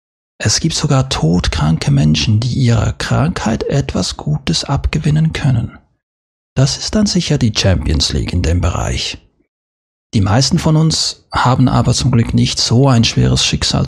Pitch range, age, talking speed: 80-130 Hz, 40-59, 150 wpm